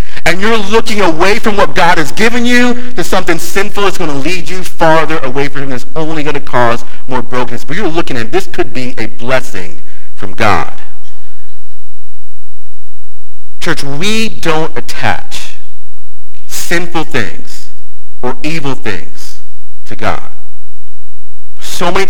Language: English